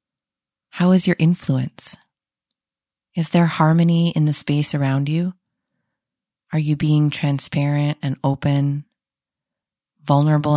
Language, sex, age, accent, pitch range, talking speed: English, female, 30-49, American, 140-165 Hz, 110 wpm